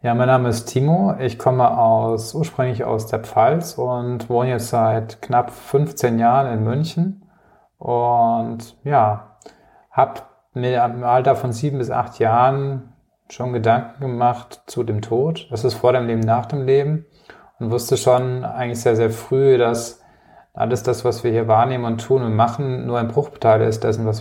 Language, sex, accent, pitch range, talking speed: German, male, German, 115-125 Hz, 175 wpm